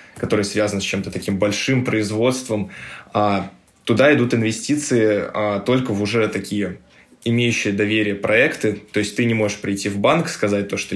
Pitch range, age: 100-115 Hz, 10-29